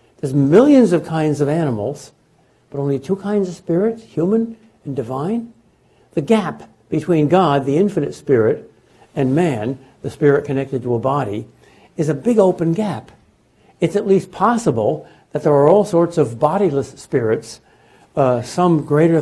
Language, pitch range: English, 140-180 Hz